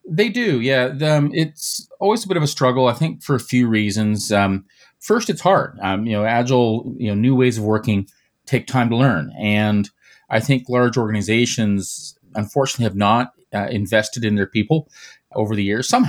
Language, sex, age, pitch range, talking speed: English, male, 30-49, 100-130 Hz, 195 wpm